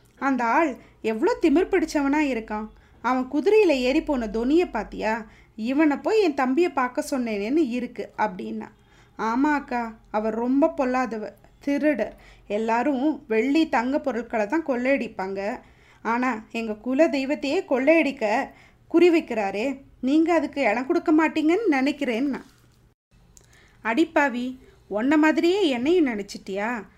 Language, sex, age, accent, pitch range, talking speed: Tamil, female, 20-39, native, 225-315 Hz, 110 wpm